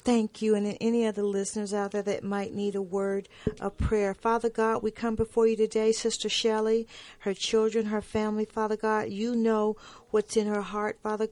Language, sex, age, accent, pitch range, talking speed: English, female, 40-59, American, 205-230 Hz, 195 wpm